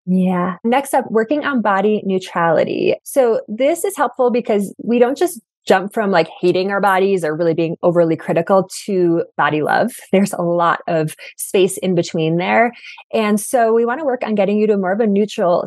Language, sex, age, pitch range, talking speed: English, female, 20-39, 170-230 Hz, 195 wpm